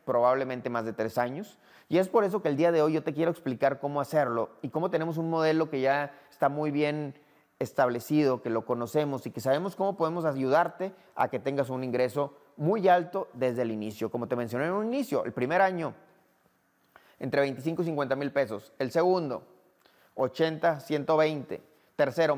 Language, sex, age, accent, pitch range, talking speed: Spanish, male, 30-49, Mexican, 125-155 Hz, 190 wpm